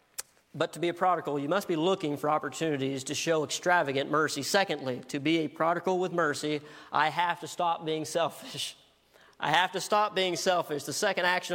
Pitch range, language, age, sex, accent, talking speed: 155-195 Hz, English, 40-59, male, American, 190 wpm